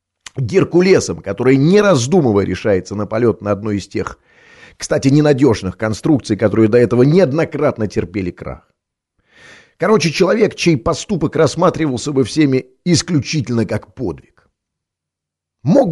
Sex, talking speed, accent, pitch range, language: male, 115 wpm, native, 105-160 Hz, Russian